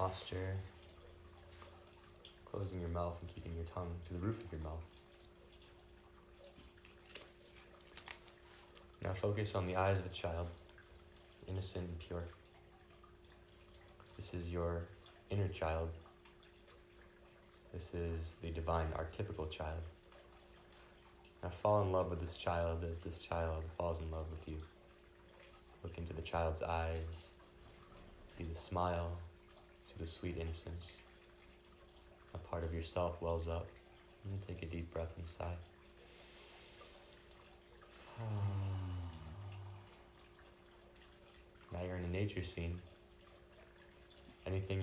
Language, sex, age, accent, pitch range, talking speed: English, male, 20-39, American, 75-90 Hz, 110 wpm